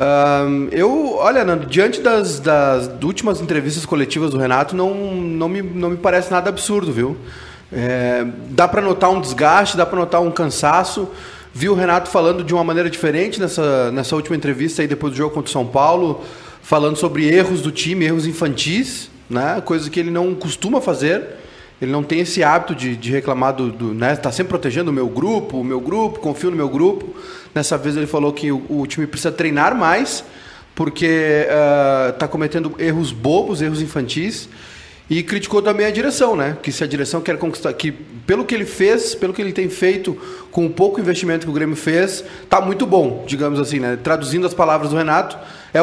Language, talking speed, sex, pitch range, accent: Portuguese, 195 wpm, male, 150-185 Hz, Brazilian